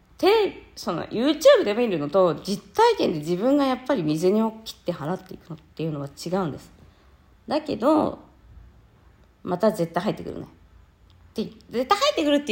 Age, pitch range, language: 40-59, 150-225 Hz, Japanese